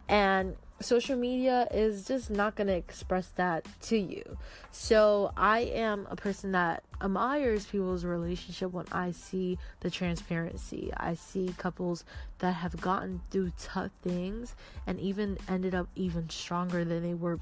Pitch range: 175-205 Hz